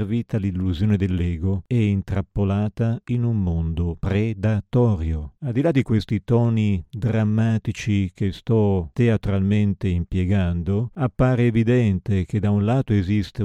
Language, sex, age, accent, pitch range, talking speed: Italian, male, 50-69, native, 95-115 Hz, 120 wpm